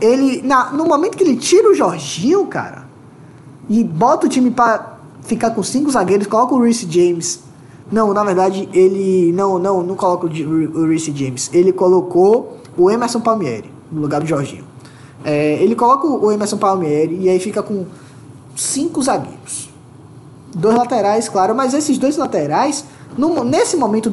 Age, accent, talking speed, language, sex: 20-39, Brazilian, 165 wpm, Portuguese, male